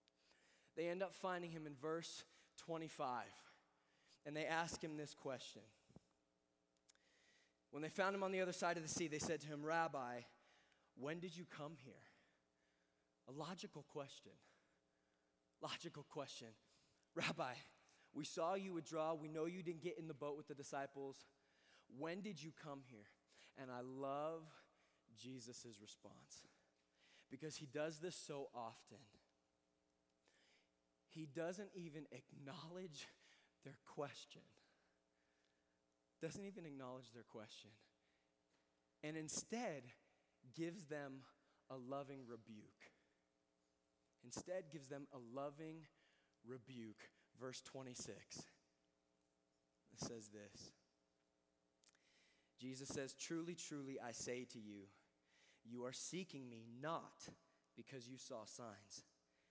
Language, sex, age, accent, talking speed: English, male, 20-39, American, 120 wpm